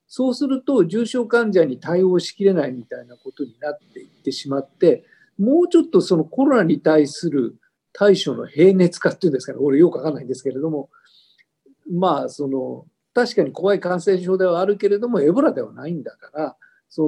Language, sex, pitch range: Japanese, male, 160-230 Hz